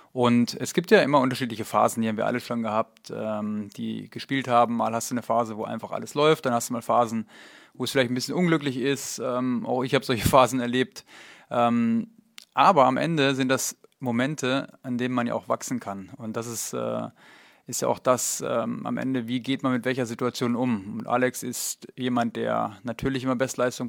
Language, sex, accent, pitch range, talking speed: German, male, German, 120-135 Hz, 210 wpm